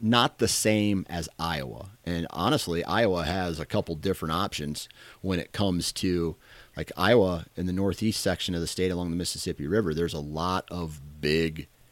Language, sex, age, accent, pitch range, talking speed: English, male, 30-49, American, 80-95 Hz, 175 wpm